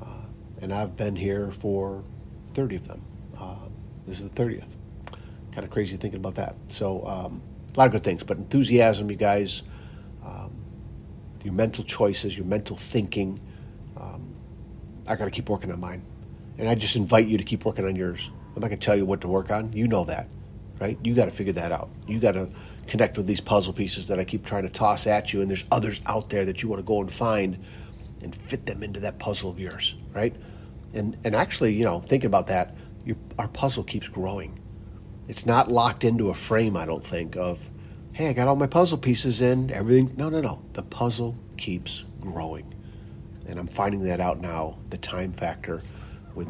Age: 40-59